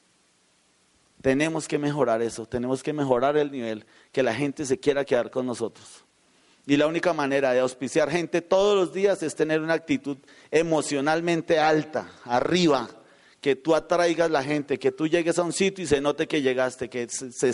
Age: 40-59